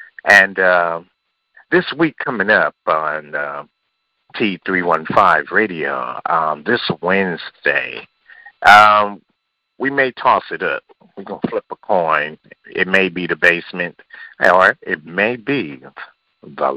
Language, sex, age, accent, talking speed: English, male, 50-69, American, 125 wpm